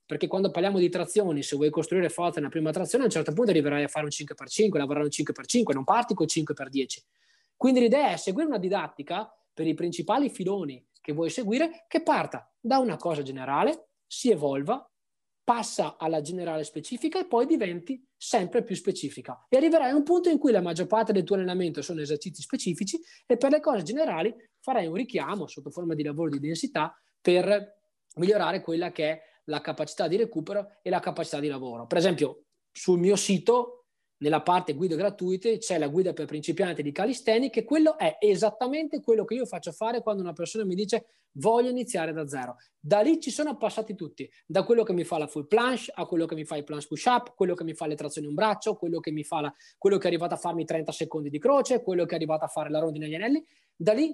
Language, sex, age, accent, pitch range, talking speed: Italian, male, 20-39, native, 160-230 Hz, 215 wpm